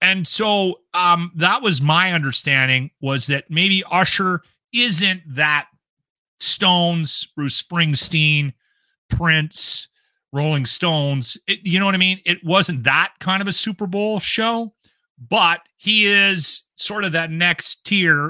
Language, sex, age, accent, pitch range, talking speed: English, male, 40-59, American, 145-180 Hz, 135 wpm